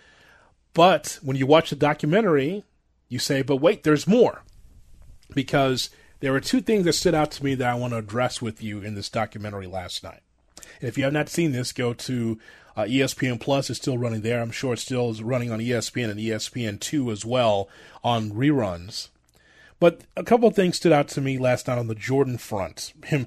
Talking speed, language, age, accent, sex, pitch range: 210 wpm, English, 30-49, American, male, 115-155 Hz